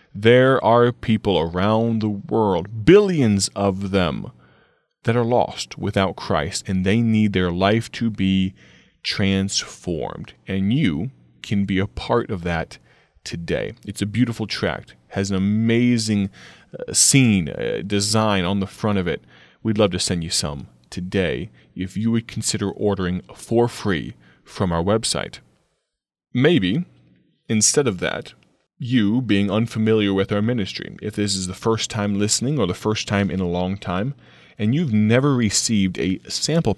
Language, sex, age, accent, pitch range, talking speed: English, male, 20-39, American, 95-115 Hz, 150 wpm